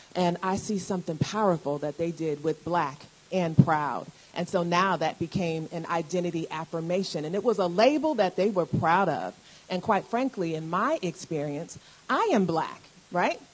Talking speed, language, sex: 175 wpm, English, female